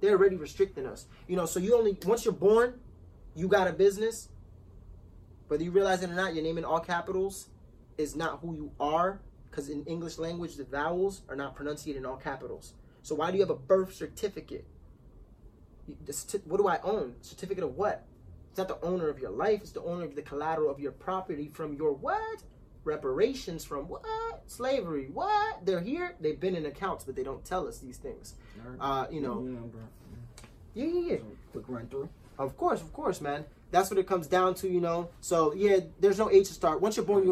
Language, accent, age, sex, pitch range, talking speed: English, American, 20-39, male, 150-215 Hz, 205 wpm